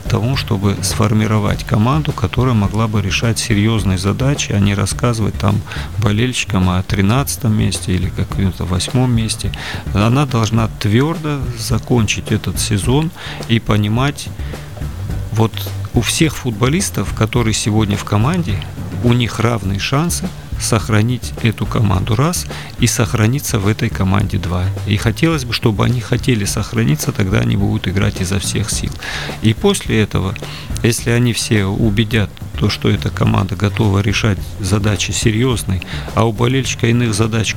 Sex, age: male, 40-59